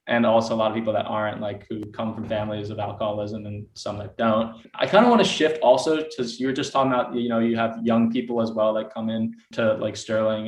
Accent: American